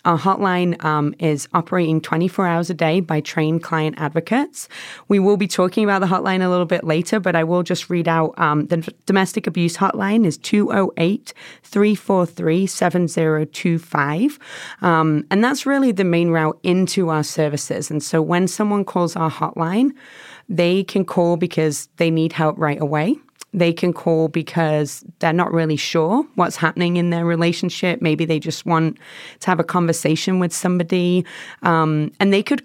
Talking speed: 165 wpm